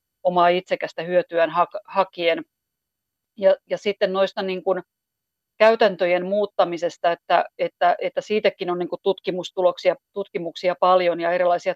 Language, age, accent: Finnish, 40-59, native